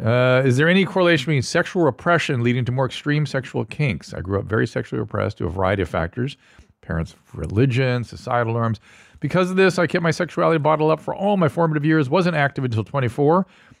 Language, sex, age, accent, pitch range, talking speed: English, male, 40-59, American, 100-145 Hz, 205 wpm